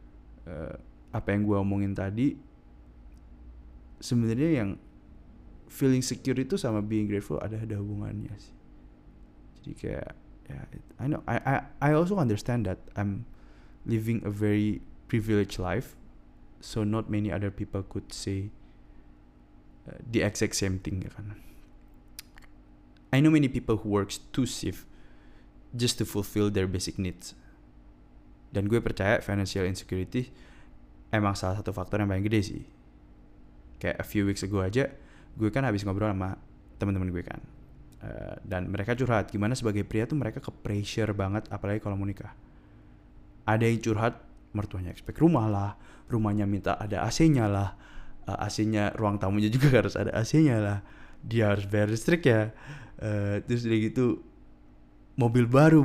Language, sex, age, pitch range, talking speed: Indonesian, male, 20-39, 90-115 Hz, 150 wpm